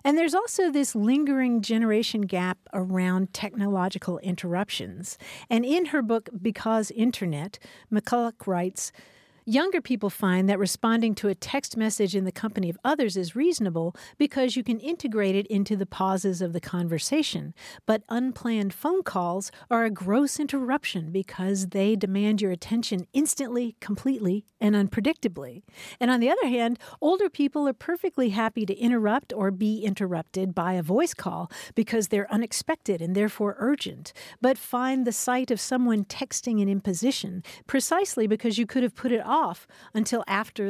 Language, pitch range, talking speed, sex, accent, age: English, 195-255 Hz, 155 wpm, female, American, 50-69